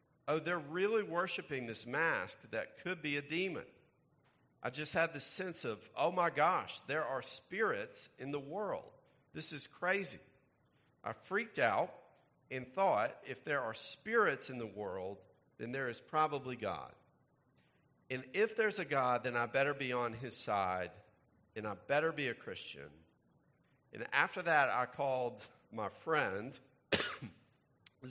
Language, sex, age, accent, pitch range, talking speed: English, male, 50-69, American, 110-155 Hz, 155 wpm